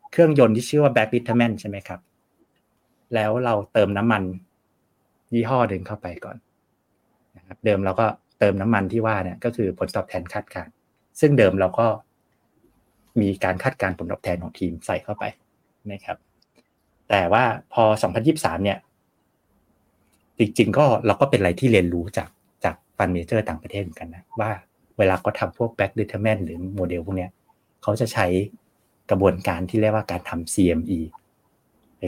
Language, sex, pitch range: Thai, male, 95-125 Hz